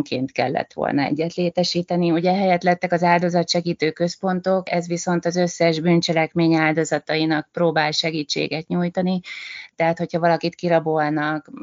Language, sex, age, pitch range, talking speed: Hungarian, female, 30-49, 150-170 Hz, 125 wpm